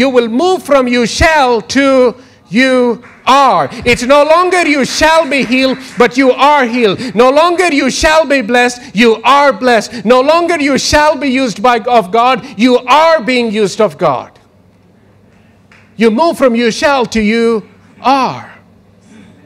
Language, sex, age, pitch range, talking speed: English, male, 50-69, 170-255 Hz, 160 wpm